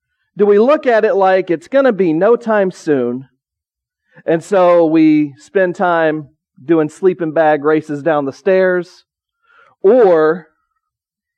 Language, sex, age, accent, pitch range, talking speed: English, male, 40-59, American, 160-235 Hz, 135 wpm